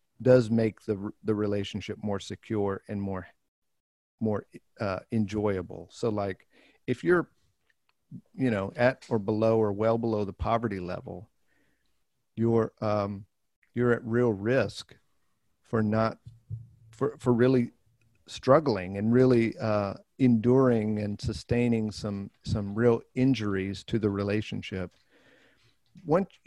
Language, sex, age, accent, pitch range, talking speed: English, male, 50-69, American, 105-125 Hz, 120 wpm